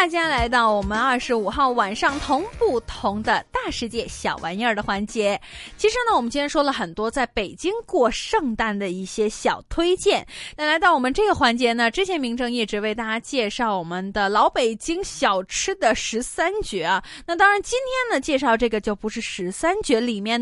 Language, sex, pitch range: Chinese, female, 215-315 Hz